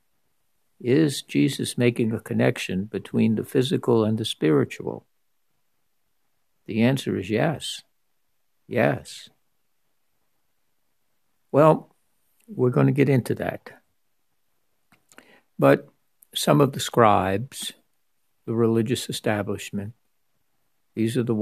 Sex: male